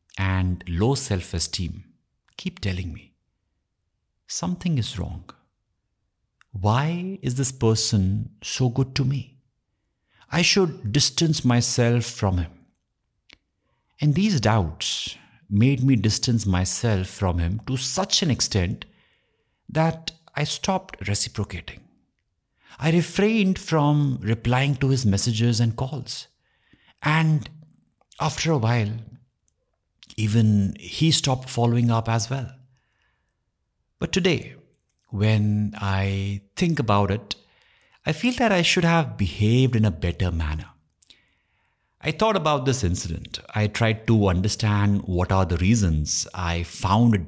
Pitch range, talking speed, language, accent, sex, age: 95-145 Hz, 120 wpm, English, Indian, male, 60-79